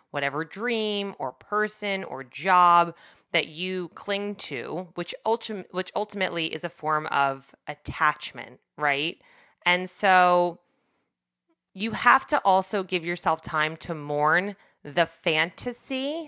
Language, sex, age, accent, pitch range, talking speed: English, female, 30-49, American, 155-205 Hz, 120 wpm